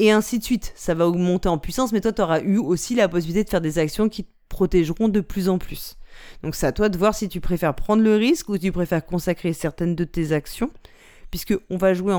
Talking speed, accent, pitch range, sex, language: 255 wpm, French, 165-210 Hz, female, French